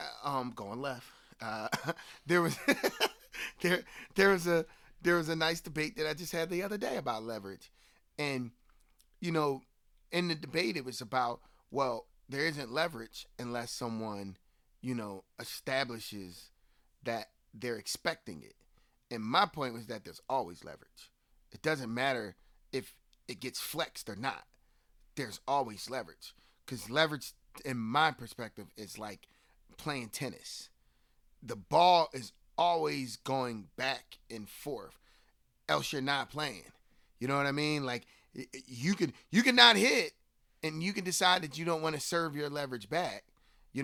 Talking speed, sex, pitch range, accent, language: 155 wpm, male, 120-170 Hz, American, English